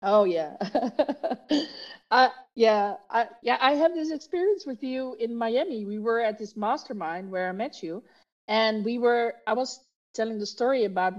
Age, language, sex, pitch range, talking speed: 50-69, Dutch, female, 205-260 Hz, 165 wpm